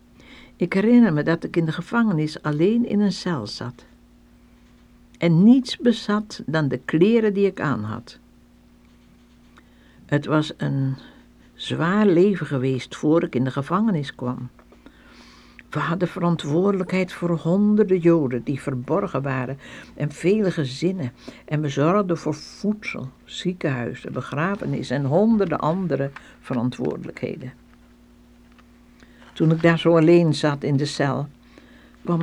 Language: Dutch